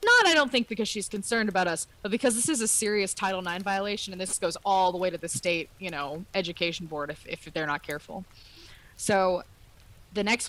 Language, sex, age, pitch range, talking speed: English, female, 20-39, 155-200 Hz, 225 wpm